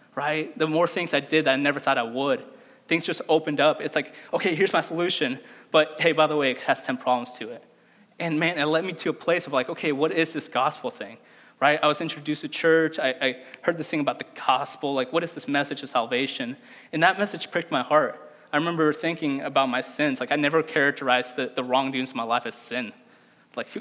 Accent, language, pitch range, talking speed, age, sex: American, English, 135-165 Hz, 240 wpm, 20-39, male